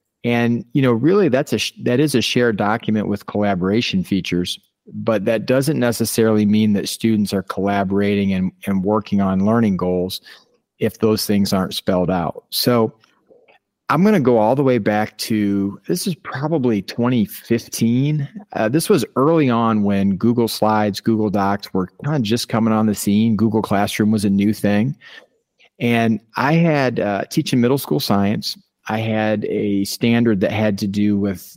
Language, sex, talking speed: English, male, 170 wpm